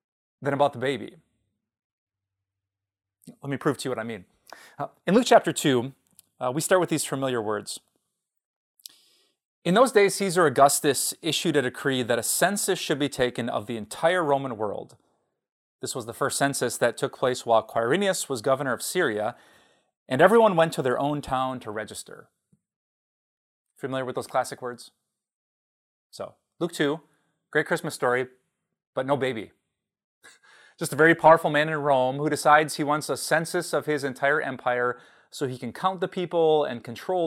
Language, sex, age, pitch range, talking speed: English, male, 30-49, 125-160 Hz, 165 wpm